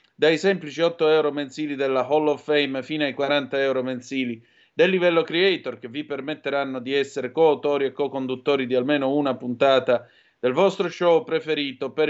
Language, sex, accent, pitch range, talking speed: Italian, male, native, 130-155 Hz, 170 wpm